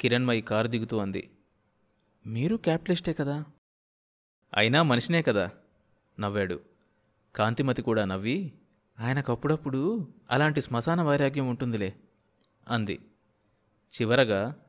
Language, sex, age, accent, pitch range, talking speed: Telugu, male, 30-49, native, 105-130 Hz, 85 wpm